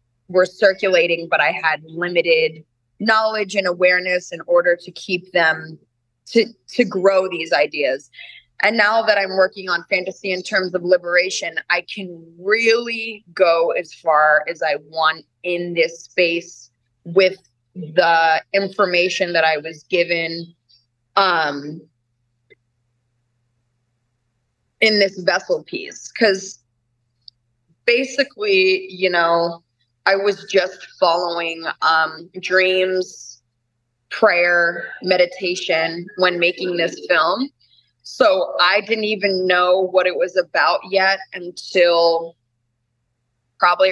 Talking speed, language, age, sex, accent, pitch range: 110 wpm, English, 20-39, female, American, 150-195 Hz